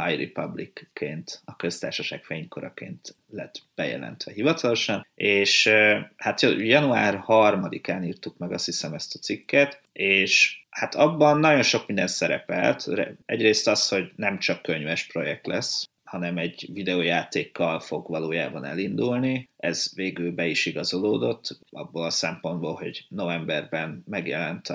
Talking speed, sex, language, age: 125 wpm, male, Hungarian, 30-49